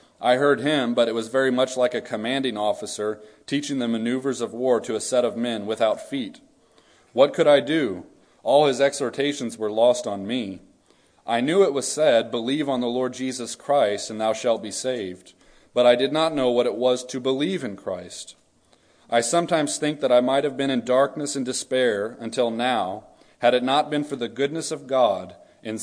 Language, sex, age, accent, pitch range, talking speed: English, male, 30-49, American, 115-145 Hz, 200 wpm